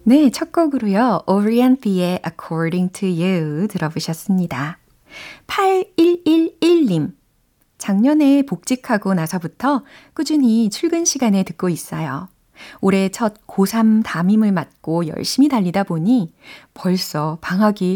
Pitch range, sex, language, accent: 170-230 Hz, female, Korean, native